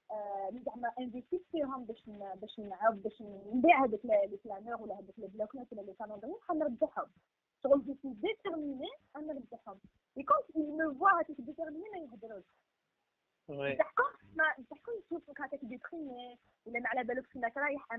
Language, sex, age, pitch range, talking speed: Arabic, female, 20-39, 245-335 Hz, 35 wpm